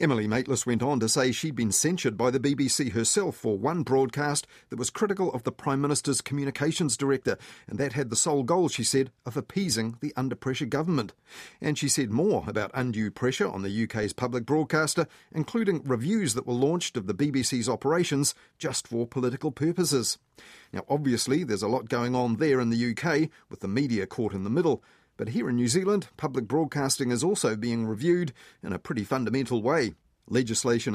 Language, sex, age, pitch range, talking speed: English, male, 40-59, 115-145 Hz, 190 wpm